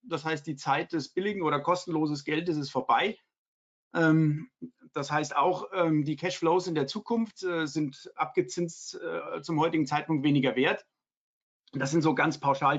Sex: male